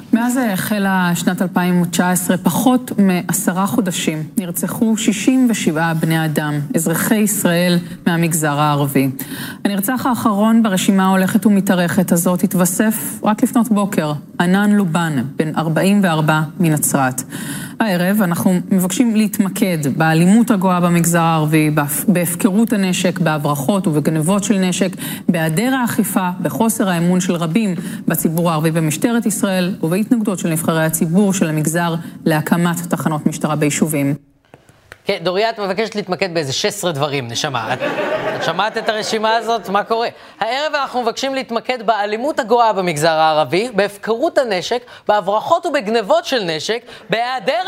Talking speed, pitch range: 120 wpm, 175-270 Hz